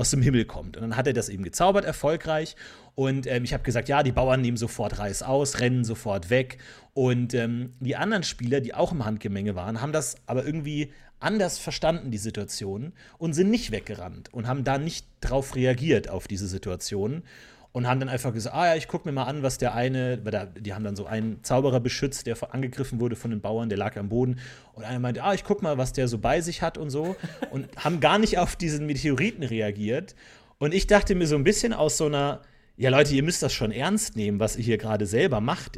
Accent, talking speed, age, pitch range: German, 230 wpm, 30-49, 115-150 Hz